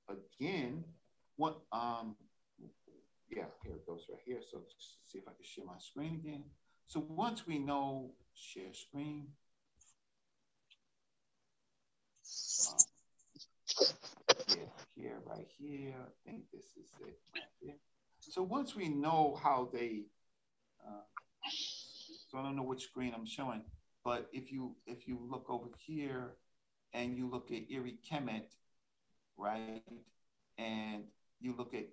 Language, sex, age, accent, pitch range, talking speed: English, male, 50-69, American, 120-150 Hz, 130 wpm